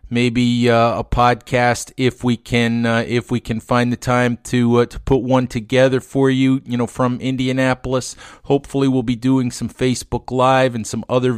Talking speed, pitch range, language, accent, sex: 190 wpm, 120-140 Hz, English, American, male